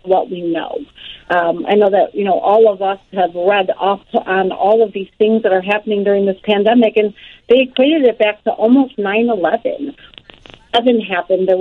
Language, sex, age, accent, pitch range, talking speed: English, female, 40-59, American, 195-225 Hz, 200 wpm